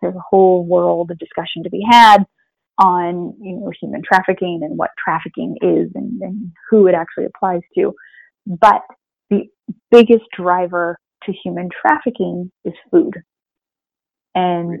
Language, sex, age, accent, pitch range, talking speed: English, female, 20-39, American, 180-225 Hz, 140 wpm